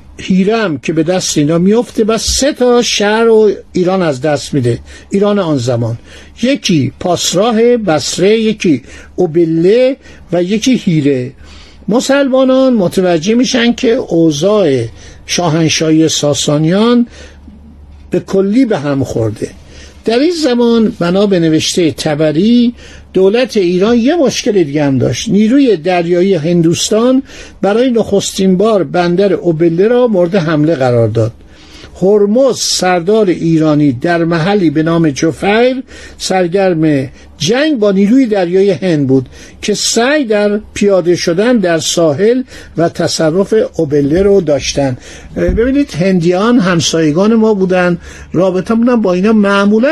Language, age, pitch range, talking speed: Persian, 60-79, 160-220 Hz, 125 wpm